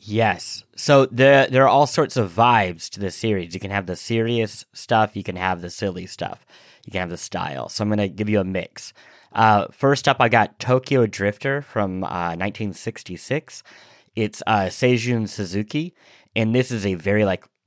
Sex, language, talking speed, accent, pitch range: male, English, 195 wpm, American, 95-120 Hz